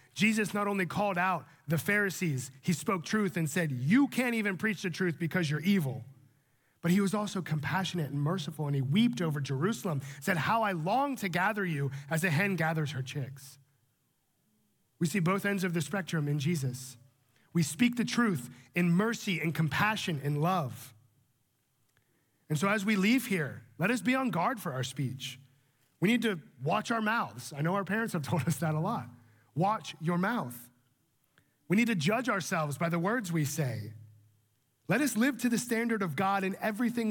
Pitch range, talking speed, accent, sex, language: 140-205 Hz, 190 wpm, American, male, English